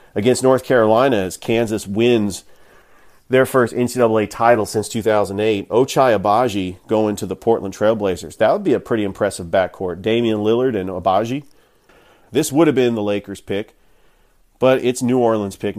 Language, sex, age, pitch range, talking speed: English, male, 40-59, 100-125 Hz, 160 wpm